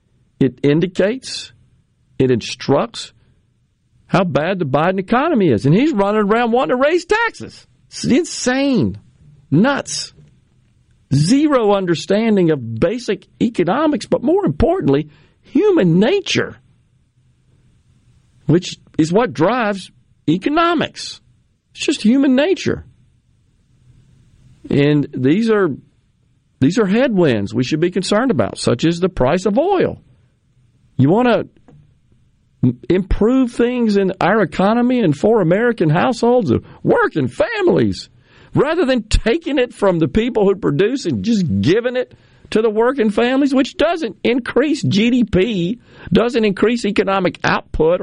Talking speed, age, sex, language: 120 wpm, 50-69, male, English